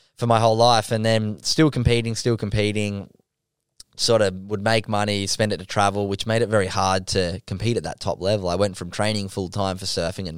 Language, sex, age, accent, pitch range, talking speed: English, male, 10-29, Australian, 95-110 Hz, 220 wpm